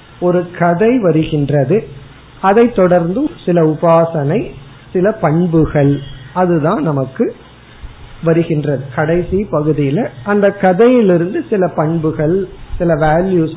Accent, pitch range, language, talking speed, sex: native, 145-195 Hz, Tamil, 90 wpm, male